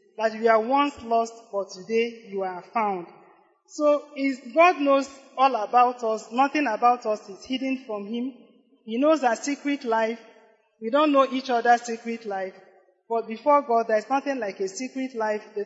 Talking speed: 175 wpm